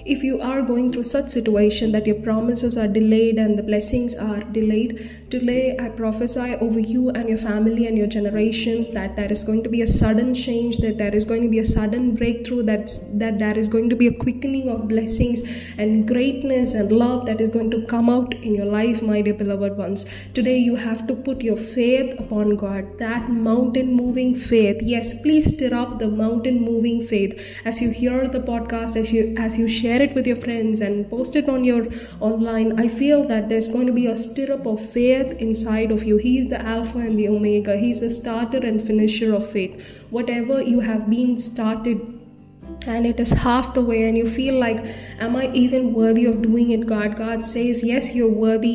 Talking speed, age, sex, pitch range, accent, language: 210 wpm, 20-39, female, 220-245 Hz, Indian, English